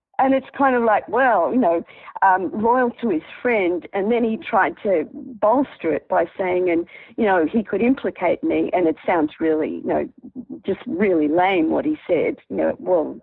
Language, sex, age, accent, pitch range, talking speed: English, female, 50-69, Australian, 180-270 Hz, 200 wpm